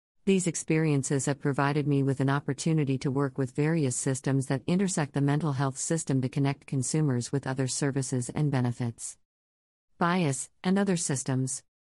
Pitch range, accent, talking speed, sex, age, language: 130-155 Hz, American, 155 wpm, female, 50-69, English